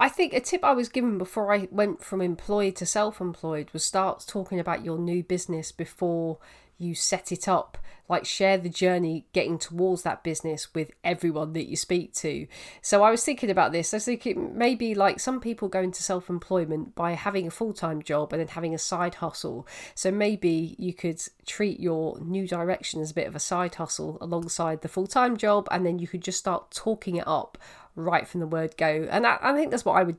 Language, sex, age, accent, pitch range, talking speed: English, female, 40-59, British, 170-200 Hz, 215 wpm